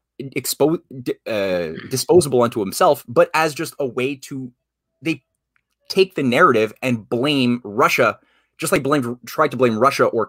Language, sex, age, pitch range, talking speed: English, male, 20-39, 100-135 Hz, 150 wpm